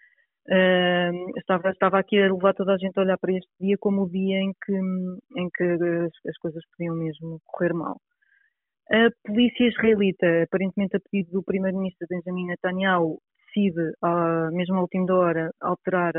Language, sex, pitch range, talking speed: Portuguese, female, 170-200 Hz, 165 wpm